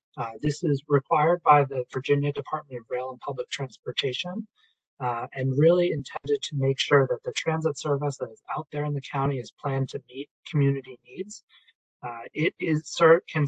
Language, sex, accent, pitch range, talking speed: English, male, American, 130-155 Hz, 185 wpm